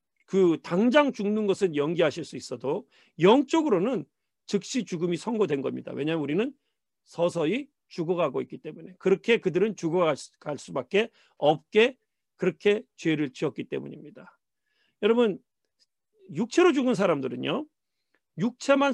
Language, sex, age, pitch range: Korean, male, 40-59, 190-275 Hz